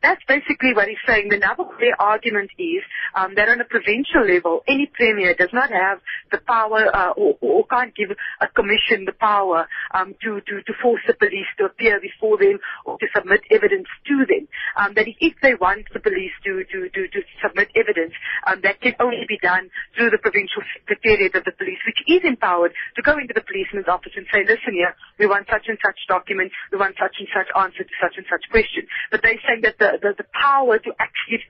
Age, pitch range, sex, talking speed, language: 30-49, 195-320 Hz, female, 215 wpm, English